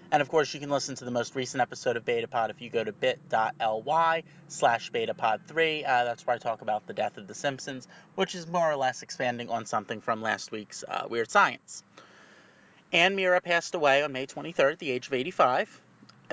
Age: 30-49